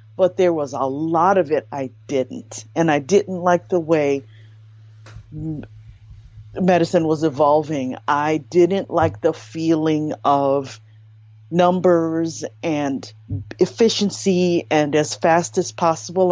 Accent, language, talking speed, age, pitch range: American, English, 120 wpm, 40-59, 110-180 Hz